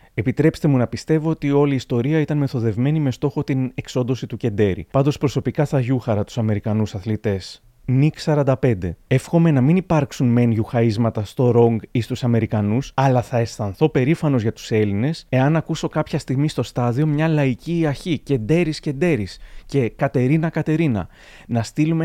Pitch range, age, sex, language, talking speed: 115-155 Hz, 30-49, male, Greek, 165 wpm